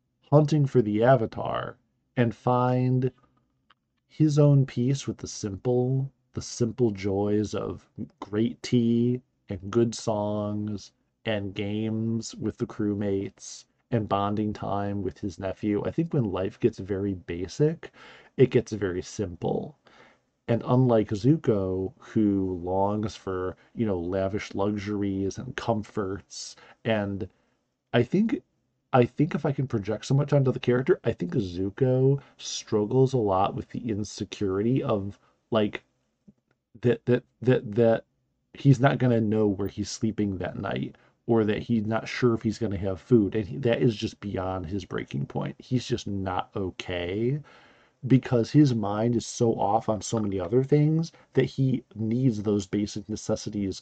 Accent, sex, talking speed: American, male, 150 wpm